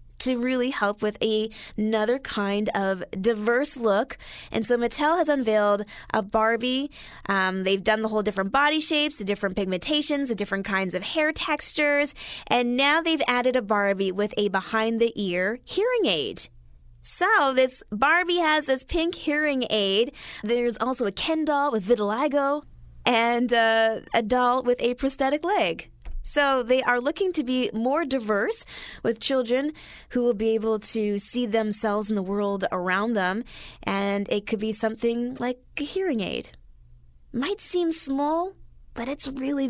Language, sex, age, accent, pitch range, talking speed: English, female, 20-39, American, 200-270 Hz, 160 wpm